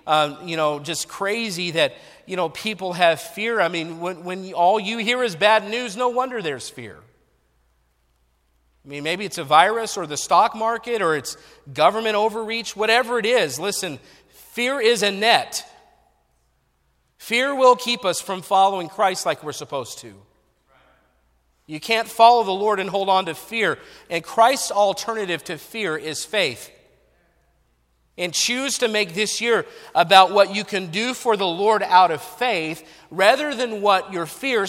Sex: male